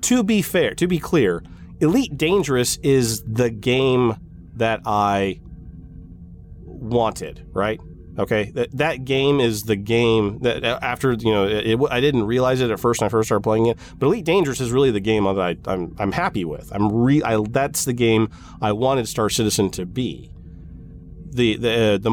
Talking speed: 185 wpm